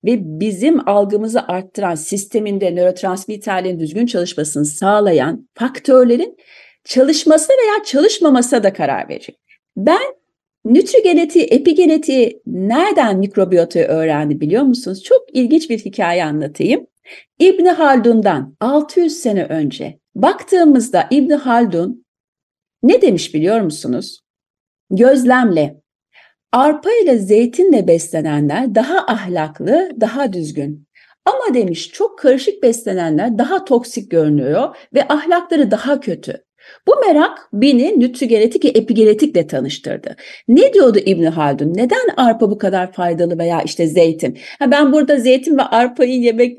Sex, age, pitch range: female, 40-59, 180-300 Hz